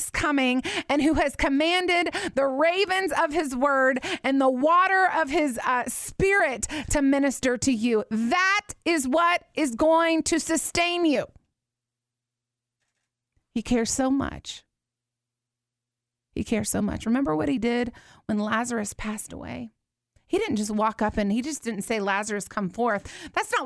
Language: English